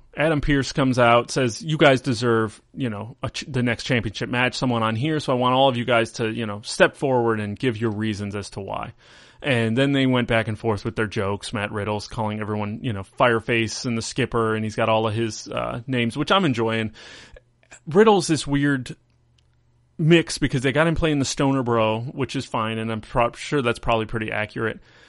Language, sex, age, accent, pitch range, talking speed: English, male, 30-49, American, 115-145 Hz, 220 wpm